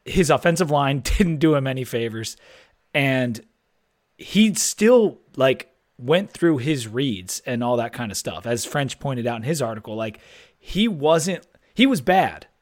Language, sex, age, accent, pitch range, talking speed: English, male, 30-49, American, 125-175 Hz, 165 wpm